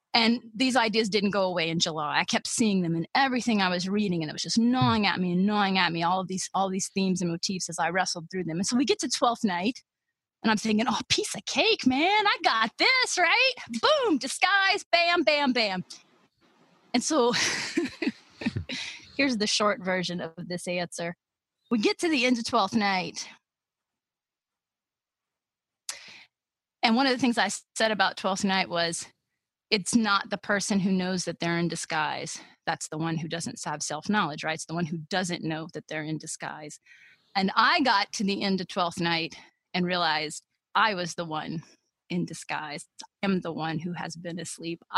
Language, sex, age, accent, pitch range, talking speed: English, female, 30-49, American, 170-240 Hz, 195 wpm